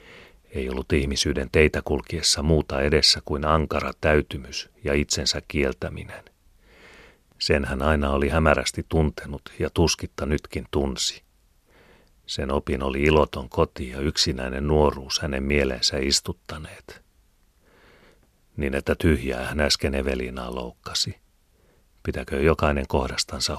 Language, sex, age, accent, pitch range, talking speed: Finnish, male, 40-59, native, 70-80 Hz, 110 wpm